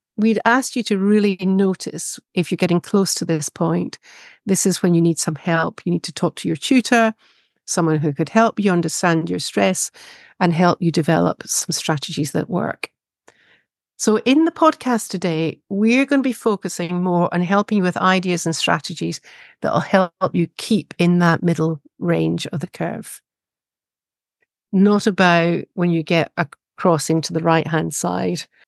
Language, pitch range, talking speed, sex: English, 165-200 Hz, 175 wpm, female